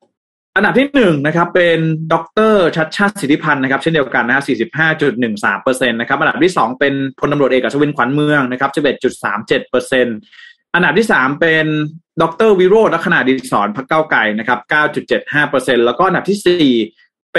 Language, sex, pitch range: Thai, male, 125-175 Hz